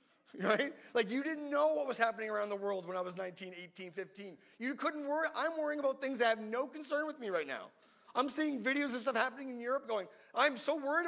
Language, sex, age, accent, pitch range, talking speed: English, male, 30-49, American, 160-215 Hz, 240 wpm